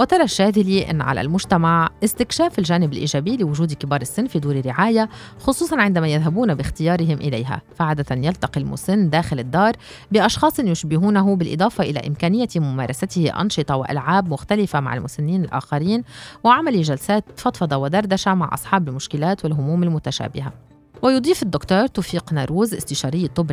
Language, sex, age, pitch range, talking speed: Arabic, female, 30-49, 145-190 Hz, 130 wpm